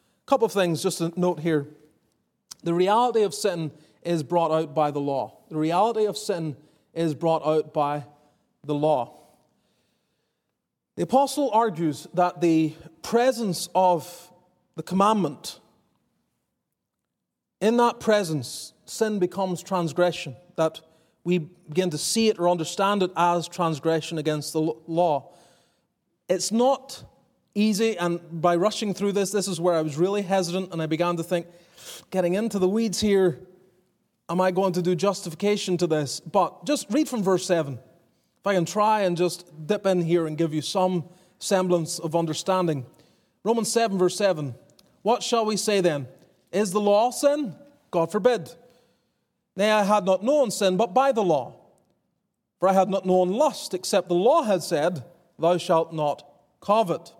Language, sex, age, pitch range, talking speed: English, male, 30-49, 160-205 Hz, 160 wpm